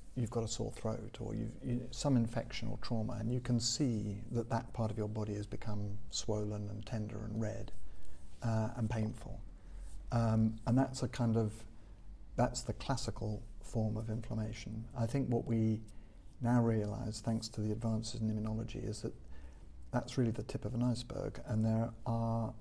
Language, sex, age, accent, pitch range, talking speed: English, male, 50-69, British, 105-120 Hz, 180 wpm